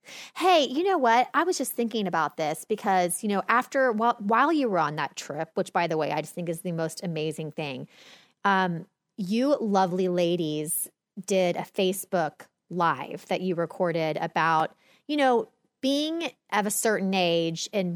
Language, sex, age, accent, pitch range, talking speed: English, female, 30-49, American, 170-230 Hz, 175 wpm